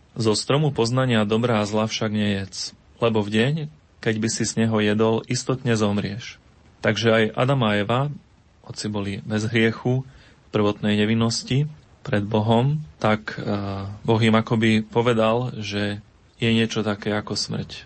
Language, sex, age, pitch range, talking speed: Slovak, male, 30-49, 105-115 Hz, 145 wpm